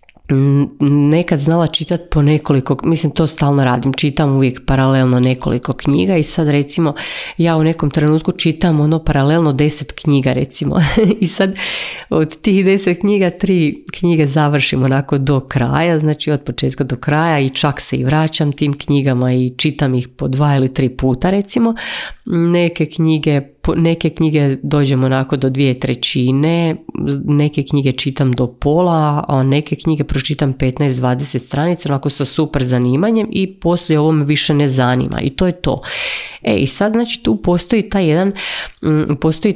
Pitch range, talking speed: 130-165 Hz, 155 wpm